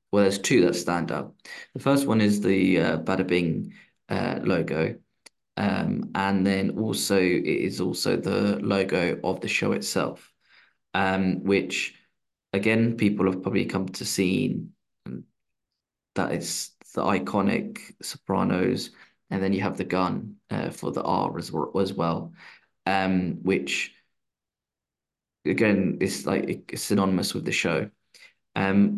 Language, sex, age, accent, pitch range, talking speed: English, male, 20-39, British, 95-110 Hz, 135 wpm